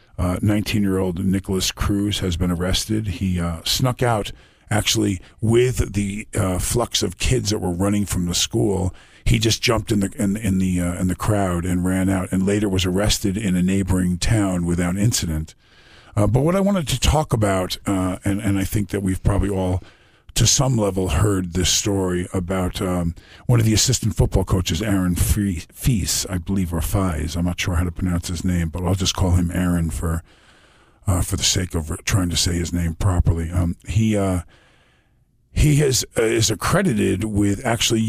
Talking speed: 195 wpm